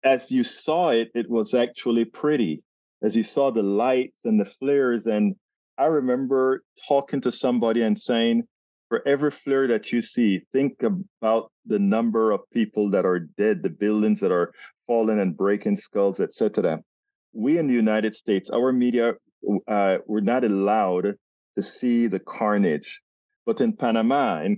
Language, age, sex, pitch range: English, 40-59, male, 105-140 Hz